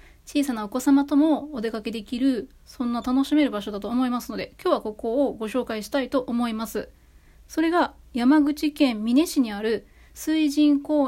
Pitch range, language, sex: 235-295 Hz, Japanese, female